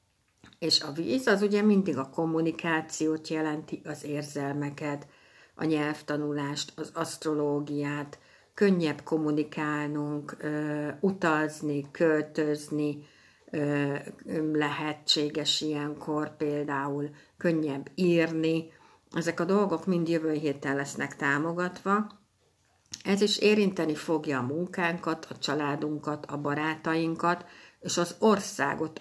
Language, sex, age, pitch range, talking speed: Hungarian, female, 60-79, 150-180 Hz, 95 wpm